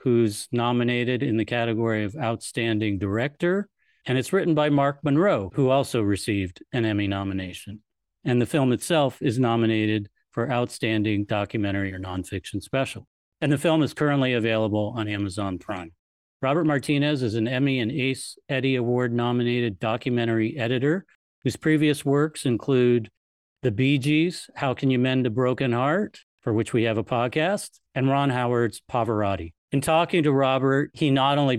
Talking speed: 160 wpm